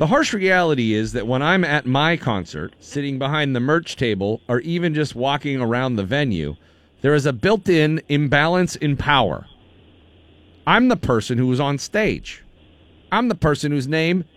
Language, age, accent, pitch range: English, 40-59, American, 125-170 Hz